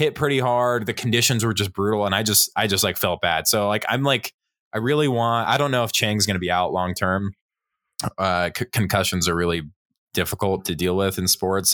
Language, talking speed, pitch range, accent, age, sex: English, 220 wpm, 90-115 Hz, American, 20-39, male